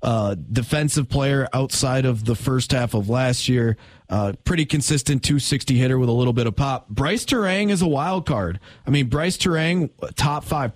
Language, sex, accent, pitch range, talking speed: English, male, American, 120-150 Hz, 190 wpm